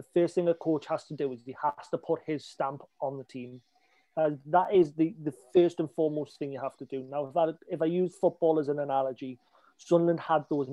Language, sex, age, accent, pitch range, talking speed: English, male, 30-49, British, 145-170 Hz, 245 wpm